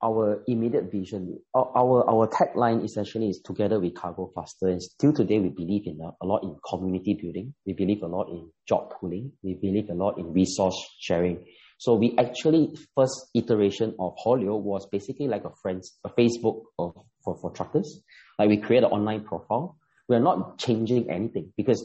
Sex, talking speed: male, 180 wpm